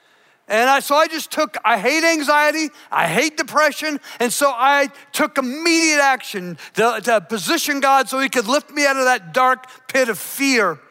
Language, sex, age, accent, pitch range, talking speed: English, male, 50-69, American, 235-295 Hz, 180 wpm